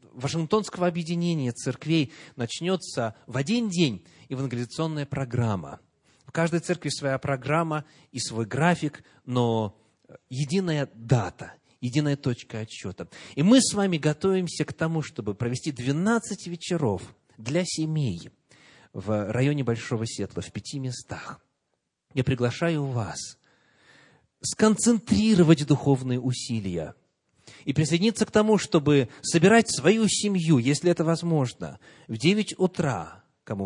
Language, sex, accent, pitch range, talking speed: Russian, male, native, 125-170 Hz, 115 wpm